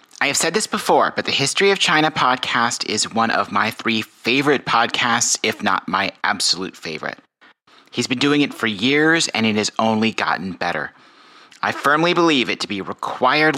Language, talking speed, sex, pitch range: English, 185 wpm, male, 120-170 Hz